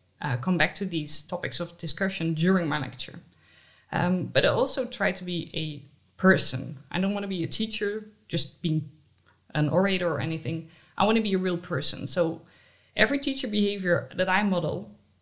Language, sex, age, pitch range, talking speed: English, female, 20-39, 150-190 Hz, 185 wpm